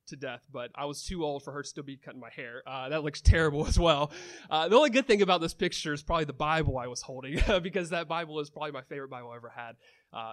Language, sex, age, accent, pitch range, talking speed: English, male, 30-49, American, 140-170 Hz, 280 wpm